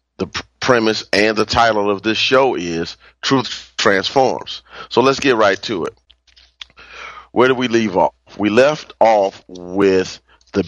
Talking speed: 150 wpm